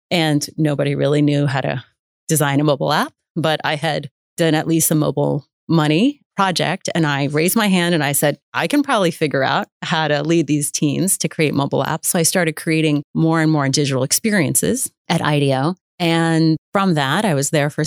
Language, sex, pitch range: English, female, 145-170 Hz